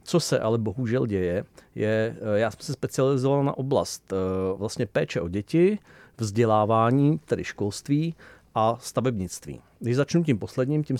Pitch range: 115-145 Hz